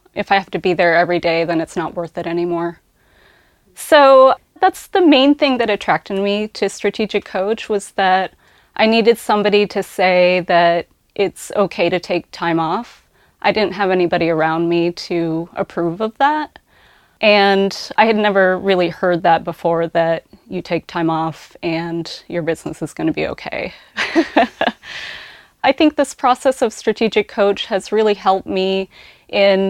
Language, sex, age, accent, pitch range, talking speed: English, female, 20-39, American, 170-210 Hz, 165 wpm